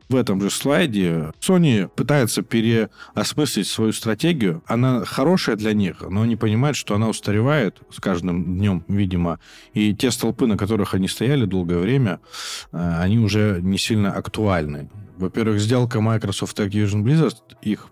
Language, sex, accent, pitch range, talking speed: Russian, male, native, 95-120 Hz, 145 wpm